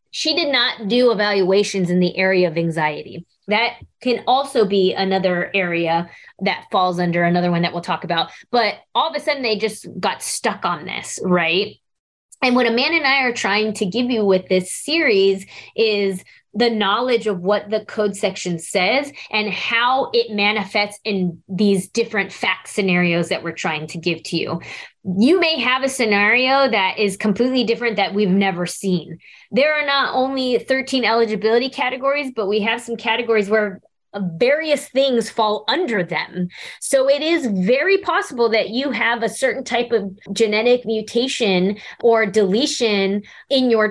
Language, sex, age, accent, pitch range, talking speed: English, female, 20-39, American, 195-240 Hz, 170 wpm